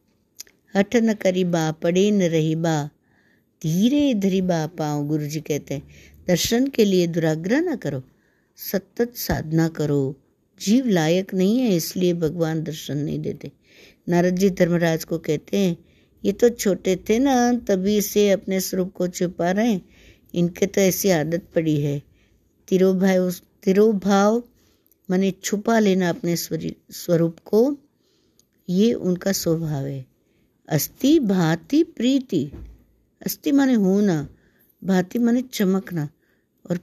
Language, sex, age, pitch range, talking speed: Hindi, female, 60-79, 155-205 Hz, 130 wpm